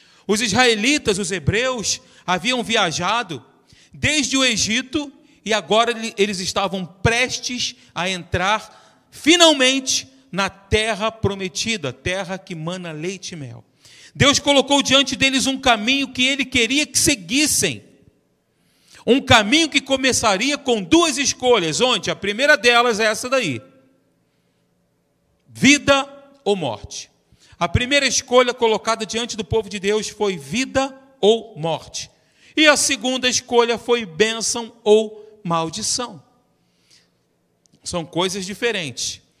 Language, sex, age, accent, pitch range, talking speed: Portuguese, male, 40-59, Brazilian, 190-255 Hz, 120 wpm